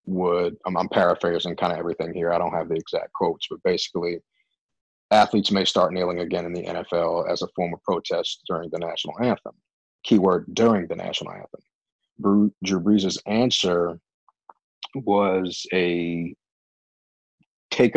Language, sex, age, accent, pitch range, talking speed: English, male, 30-49, American, 85-100 Hz, 145 wpm